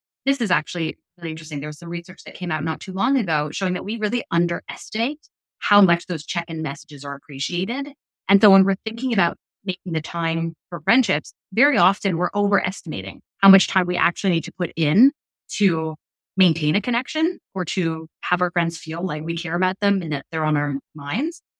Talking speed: 205 wpm